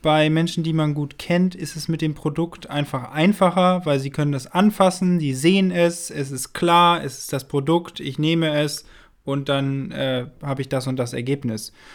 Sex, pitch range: male, 150-180 Hz